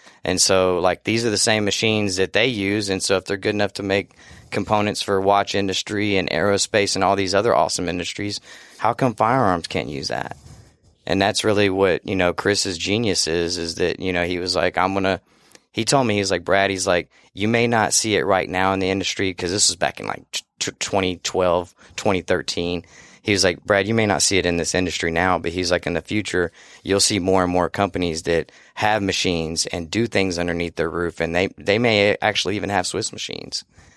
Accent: American